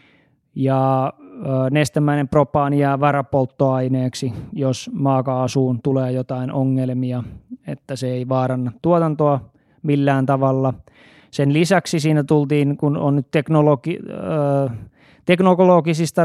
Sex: male